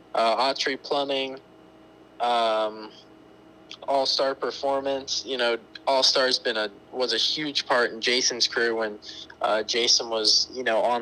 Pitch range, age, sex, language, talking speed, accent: 110-130 Hz, 20-39, male, English, 145 wpm, American